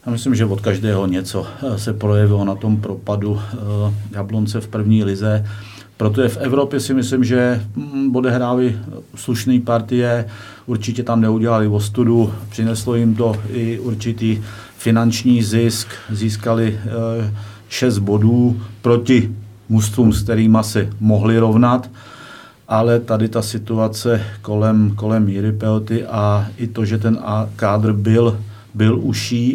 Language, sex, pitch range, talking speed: Czech, male, 105-115 Hz, 125 wpm